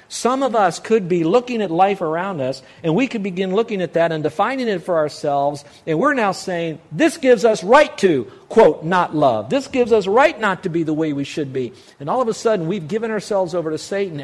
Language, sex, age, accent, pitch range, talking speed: English, male, 50-69, American, 130-180 Hz, 240 wpm